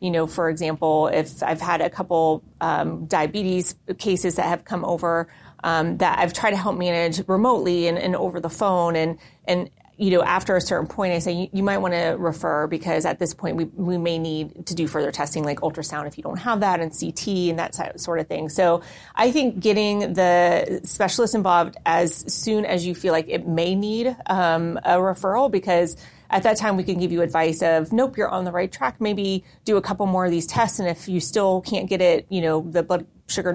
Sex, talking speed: female, 225 wpm